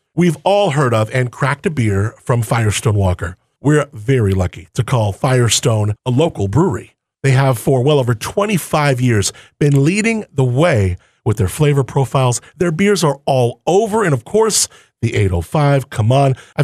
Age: 40-59